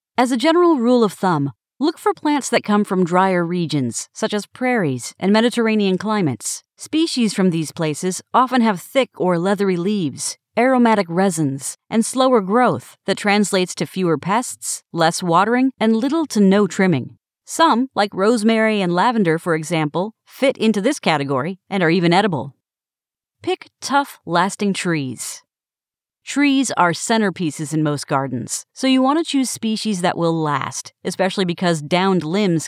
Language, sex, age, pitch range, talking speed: English, female, 40-59, 170-245 Hz, 155 wpm